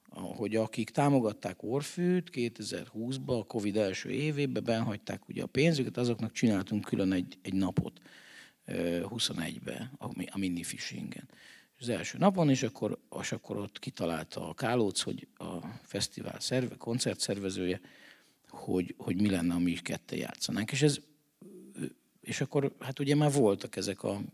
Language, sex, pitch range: Hungarian, male, 105-140 Hz